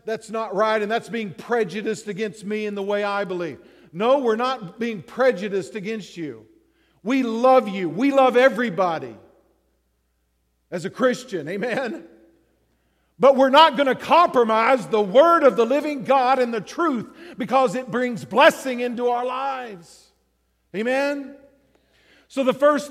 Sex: male